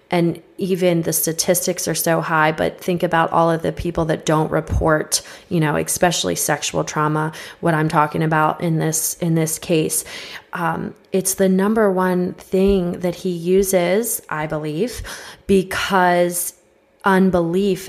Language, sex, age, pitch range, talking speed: English, female, 20-39, 165-190 Hz, 150 wpm